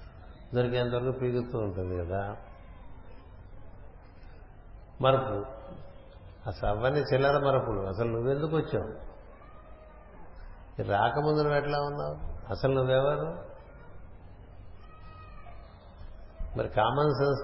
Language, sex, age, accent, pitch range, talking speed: Telugu, male, 50-69, native, 90-130 Hz, 70 wpm